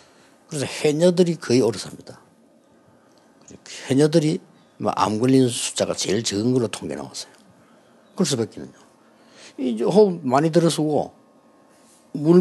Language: Korean